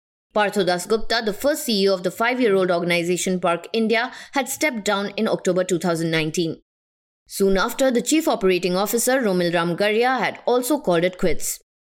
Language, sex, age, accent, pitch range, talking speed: English, female, 20-39, Indian, 180-235 Hz, 150 wpm